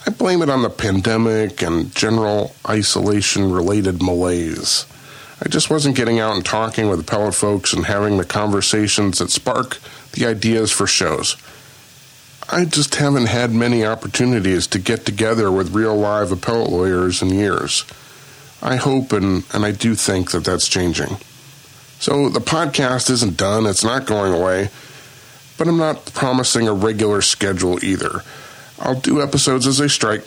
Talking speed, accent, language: 160 wpm, American, English